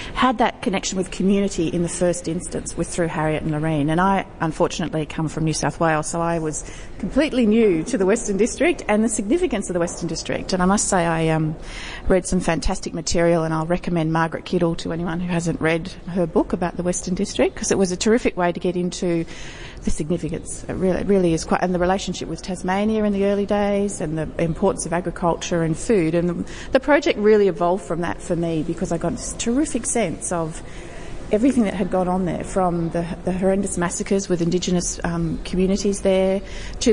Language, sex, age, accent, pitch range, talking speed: English, female, 30-49, Australian, 165-195 Hz, 205 wpm